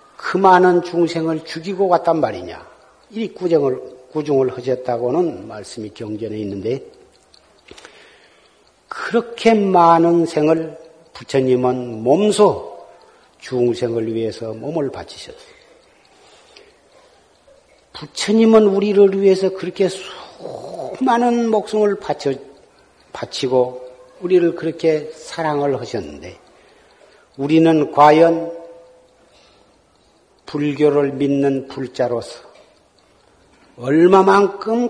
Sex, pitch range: male, 145-190 Hz